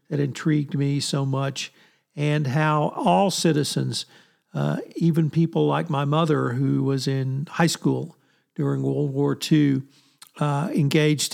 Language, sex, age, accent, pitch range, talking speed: English, male, 50-69, American, 140-165 Hz, 140 wpm